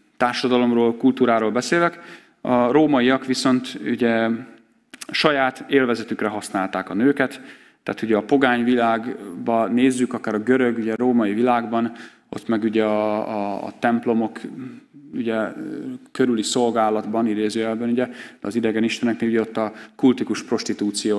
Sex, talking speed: male, 125 wpm